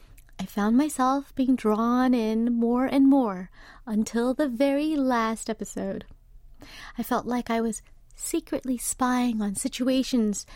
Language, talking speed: English, 130 wpm